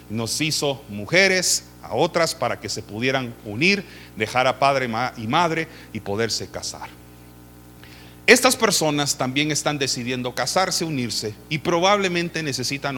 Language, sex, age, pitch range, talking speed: Spanish, male, 40-59, 95-145 Hz, 130 wpm